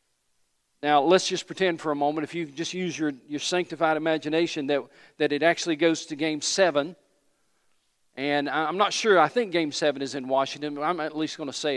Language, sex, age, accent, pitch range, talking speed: English, male, 40-59, American, 150-175 Hz, 210 wpm